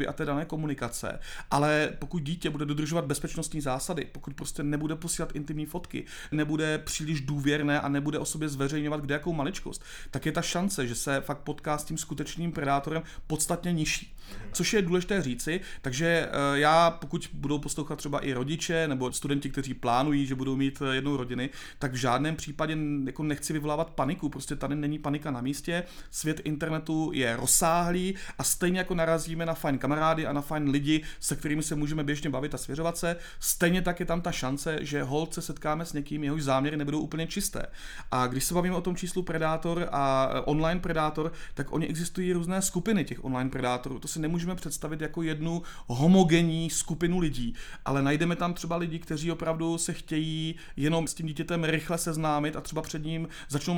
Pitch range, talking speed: 145-170 Hz, 185 wpm